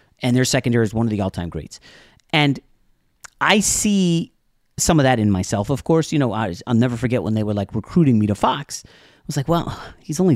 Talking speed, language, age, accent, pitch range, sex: 220 wpm, English, 30-49, American, 95-130 Hz, male